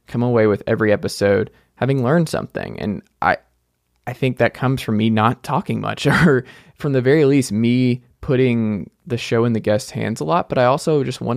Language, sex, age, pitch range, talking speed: English, male, 20-39, 110-130 Hz, 205 wpm